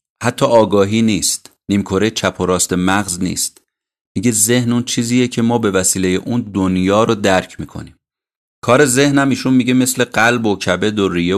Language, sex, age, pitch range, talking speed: Persian, male, 30-49, 90-120 Hz, 170 wpm